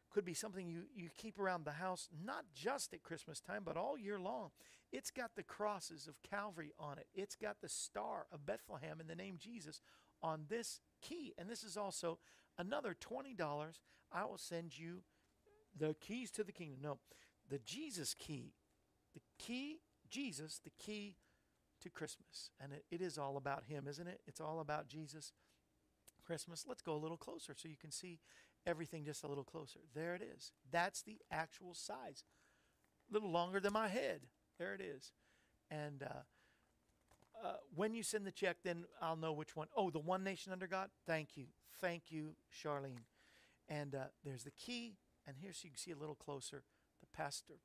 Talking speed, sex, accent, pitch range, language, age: 190 wpm, male, American, 145-195 Hz, English, 50-69